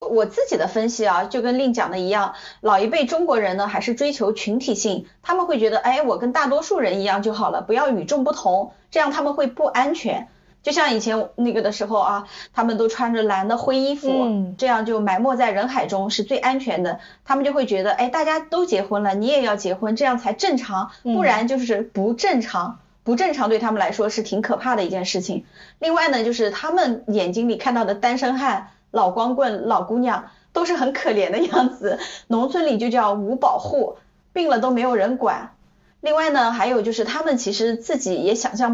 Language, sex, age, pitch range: Chinese, female, 20-39, 205-265 Hz